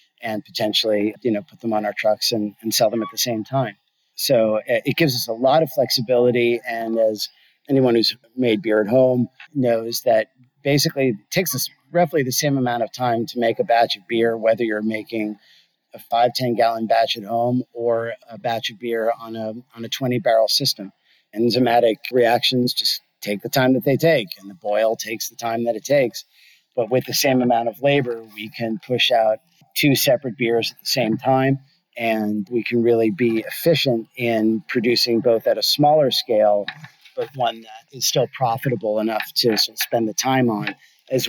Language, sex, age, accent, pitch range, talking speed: English, male, 40-59, American, 110-130 Hz, 190 wpm